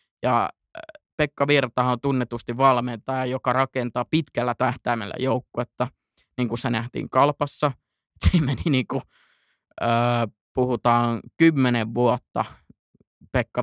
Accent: native